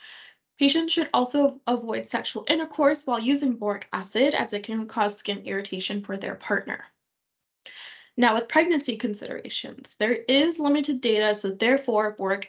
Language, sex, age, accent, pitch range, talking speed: English, female, 10-29, American, 210-275 Hz, 145 wpm